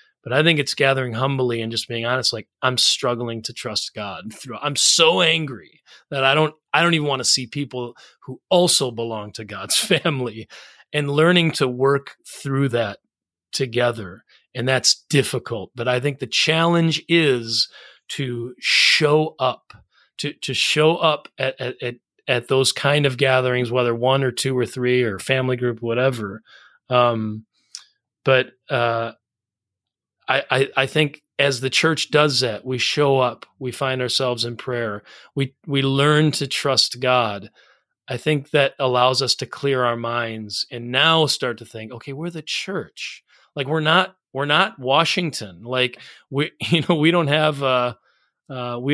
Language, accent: English, American